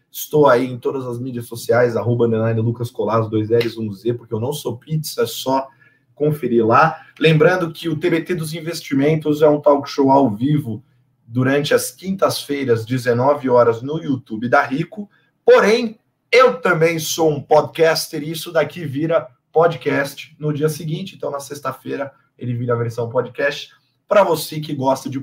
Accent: Brazilian